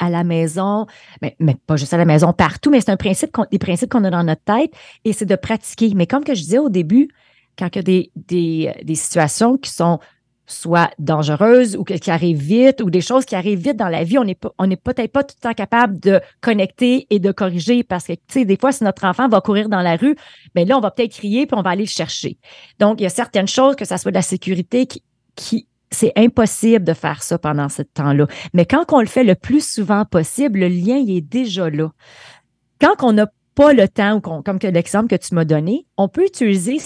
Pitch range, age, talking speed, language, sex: 175-235 Hz, 30-49, 250 wpm, English, female